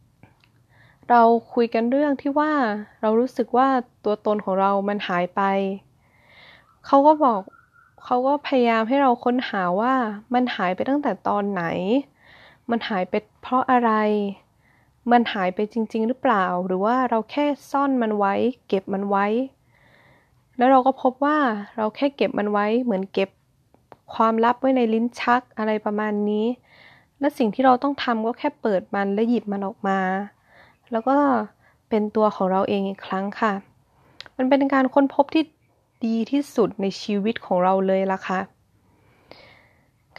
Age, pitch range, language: 20-39, 200-260 Hz, Thai